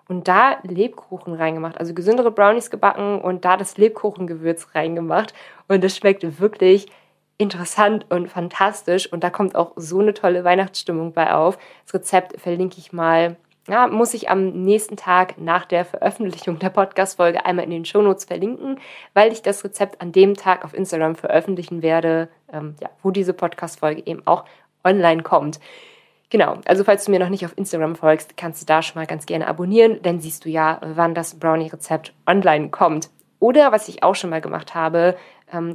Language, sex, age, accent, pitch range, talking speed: German, female, 20-39, German, 170-200 Hz, 180 wpm